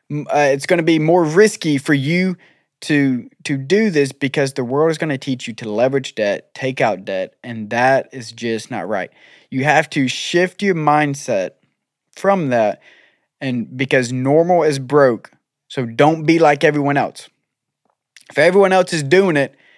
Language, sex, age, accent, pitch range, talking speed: English, male, 20-39, American, 130-170 Hz, 175 wpm